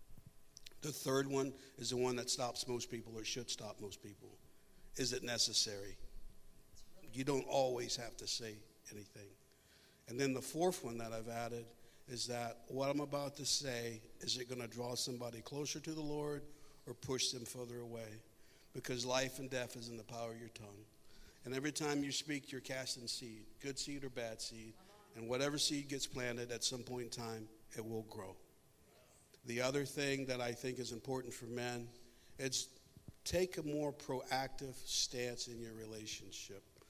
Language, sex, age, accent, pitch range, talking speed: English, male, 50-69, American, 115-135 Hz, 180 wpm